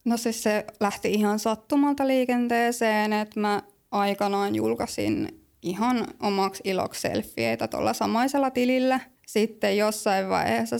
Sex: female